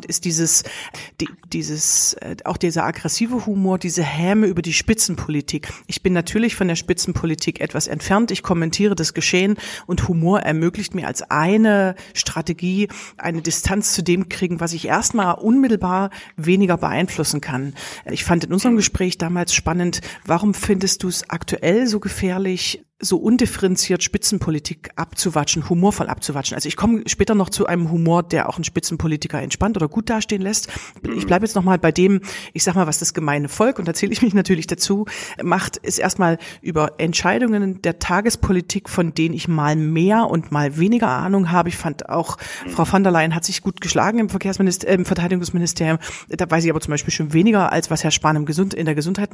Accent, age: German, 40-59